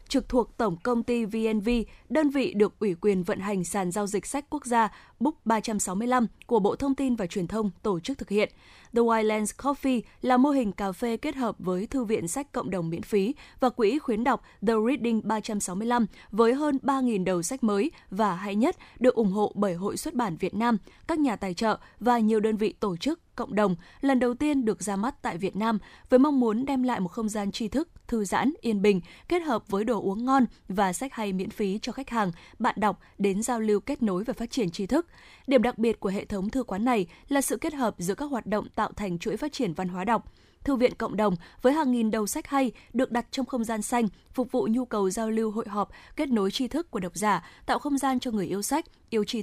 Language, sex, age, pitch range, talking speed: Vietnamese, female, 10-29, 205-255 Hz, 245 wpm